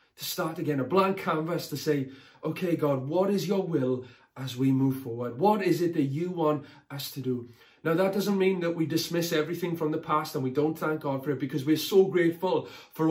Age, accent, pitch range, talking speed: 30-49, British, 155-195 Hz, 230 wpm